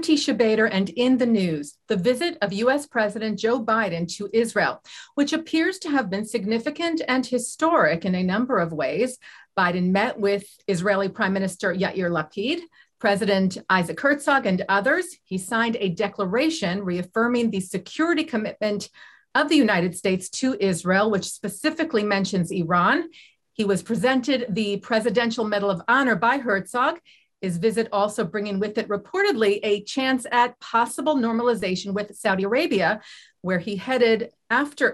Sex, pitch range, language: female, 195-250 Hz, English